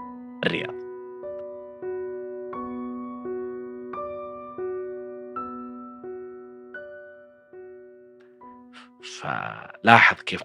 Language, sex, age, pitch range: Arabic, male, 40-59, 100-125 Hz